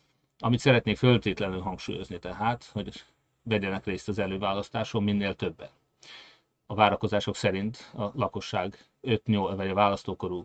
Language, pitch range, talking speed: Hungarian, 100-115 Hz, 120 wpm